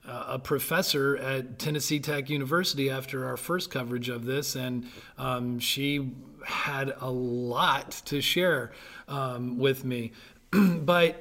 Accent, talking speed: American, 135 wpm